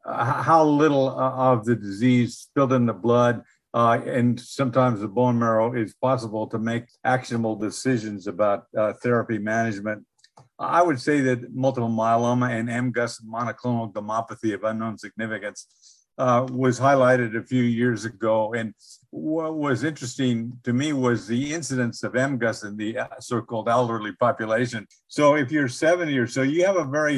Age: 50-69